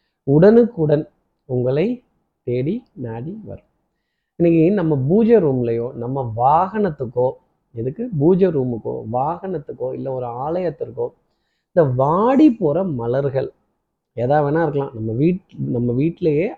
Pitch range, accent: 130-175 Hz, native